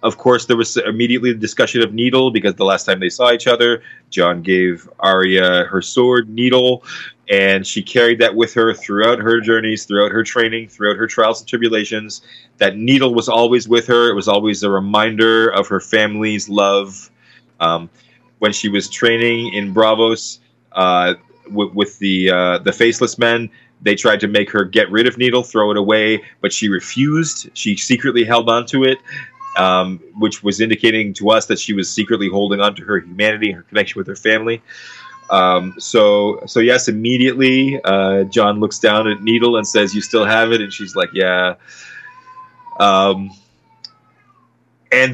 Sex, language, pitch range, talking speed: male, English, 100-120 Hz, 175 wpm